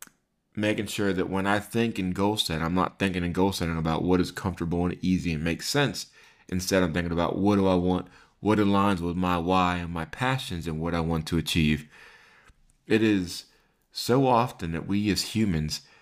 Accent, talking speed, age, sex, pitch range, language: American, 200 wpm, 30-49, male, 85-100 Hz, English